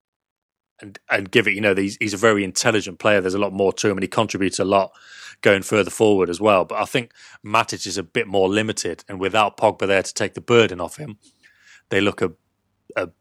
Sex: male